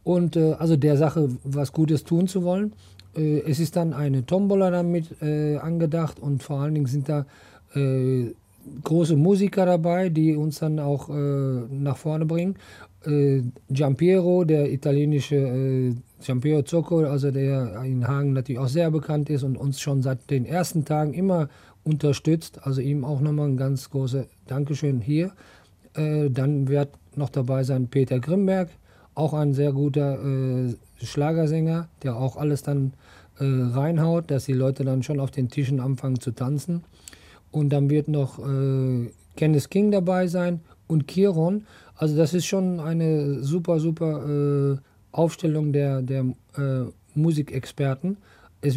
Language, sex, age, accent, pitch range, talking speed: German, male, 50-69, German, 135-160 Hz, 155 wpm